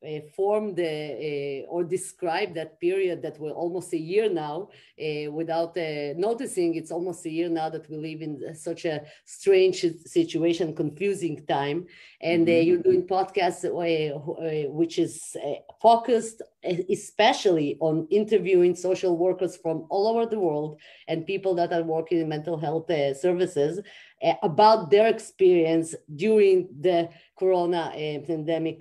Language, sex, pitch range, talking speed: Hebrew, female, 160-190 Hz, 155 wpm